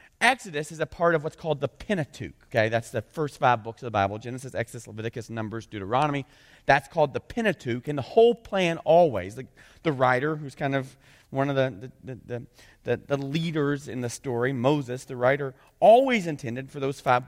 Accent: American